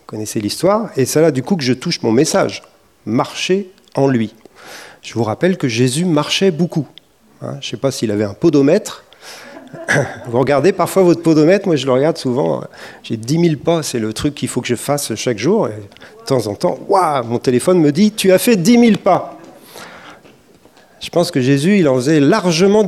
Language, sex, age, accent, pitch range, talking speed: French, male, 40-59, French, 130-185 Hz, 205 wpm